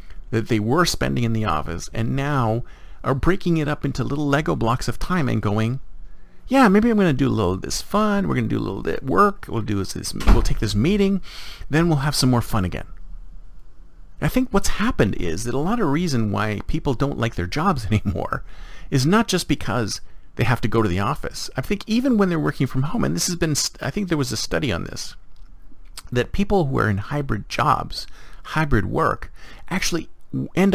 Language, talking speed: English, 220 wpm